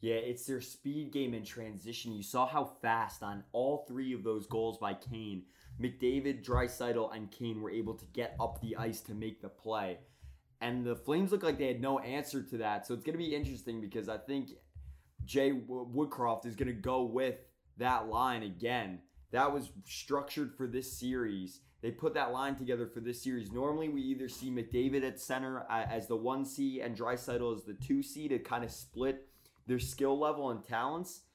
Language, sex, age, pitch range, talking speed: English, male, 20-39, 115-135 Hz, 195 wpm